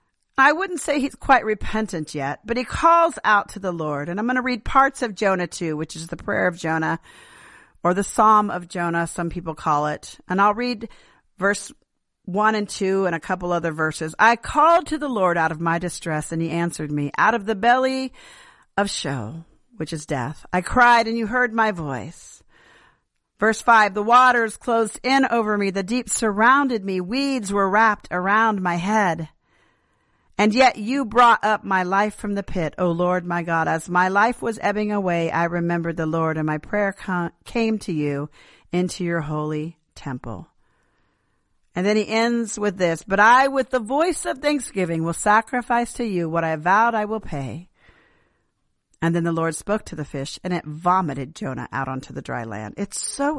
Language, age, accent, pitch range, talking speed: English, 40-59, American, 165-235 Hz, 195 wpm